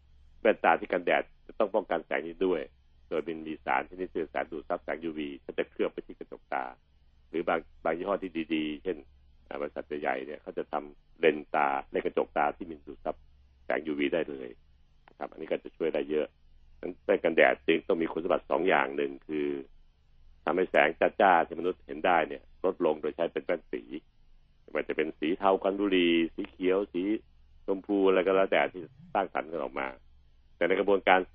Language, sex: Thai, male